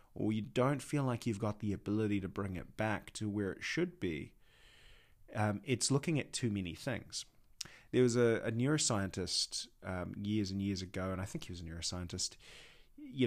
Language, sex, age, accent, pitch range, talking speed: English, male, 30-49, Australian, 100-125 Hz, 195 wpm